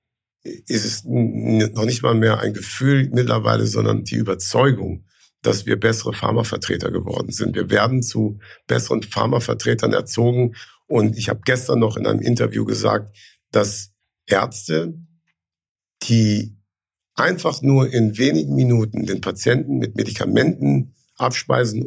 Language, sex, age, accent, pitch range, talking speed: German, male, 50-69, German, 100-125 Hz, 125 wpm